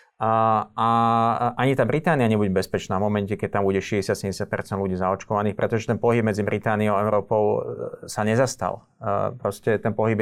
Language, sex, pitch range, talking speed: Slovak, male, 100-115 Hz, 165 wpm